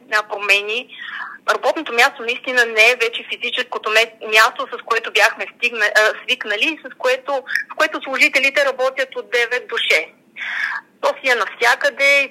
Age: 30-49